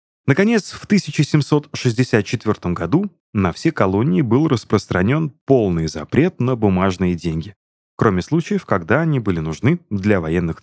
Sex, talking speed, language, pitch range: male, 125 wpm, Russian, 95-155 Hz